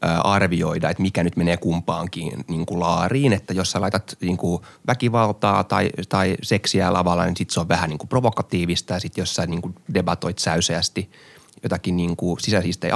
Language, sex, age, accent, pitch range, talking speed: Finnish, male, 30-49, native, 85-105 Hz, 165 wpm